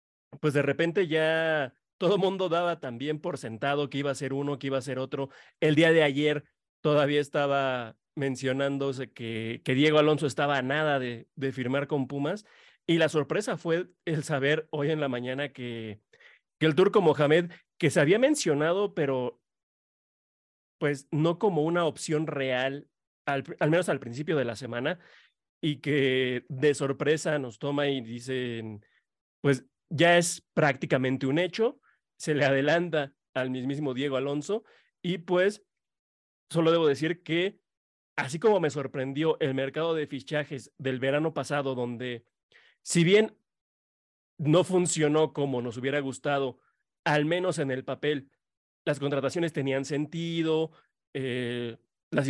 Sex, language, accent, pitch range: male, Spanish, Mexican, 135-160 Hz